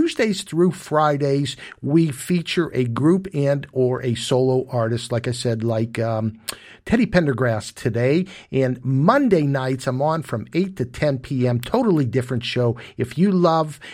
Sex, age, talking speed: male, 50-69, 155 wpm